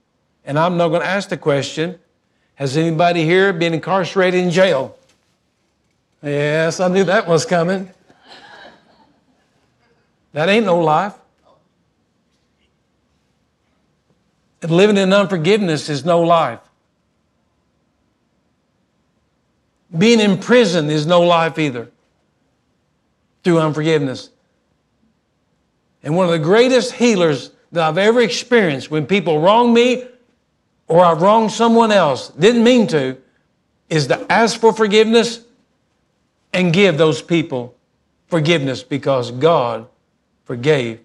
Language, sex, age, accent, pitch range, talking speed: English, male, 60-79, American, 155-225 Hz, 110 wpm